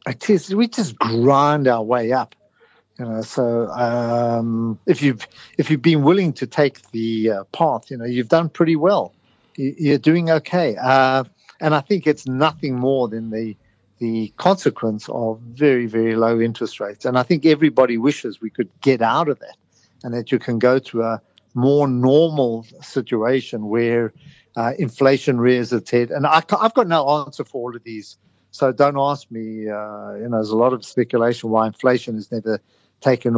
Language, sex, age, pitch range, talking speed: English, male, 50-69, 115-155 Hz, 185 wpm